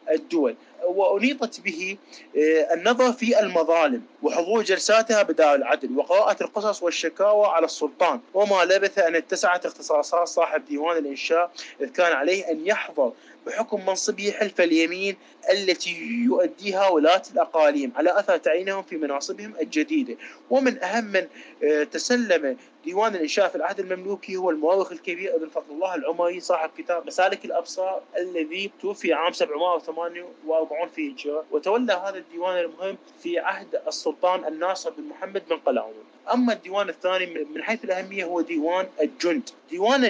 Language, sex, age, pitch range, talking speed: Arabic, male, 30-49, 170-225 Hz, 135 wpm